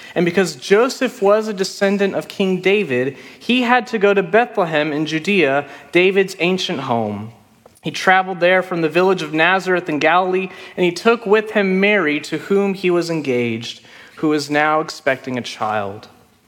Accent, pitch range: American, 165-205 Hz